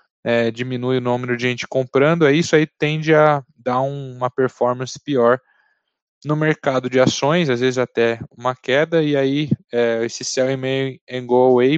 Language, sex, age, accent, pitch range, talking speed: Portuguese, male, 10-29, Brazilian, 125-155 Hz, 190 wpm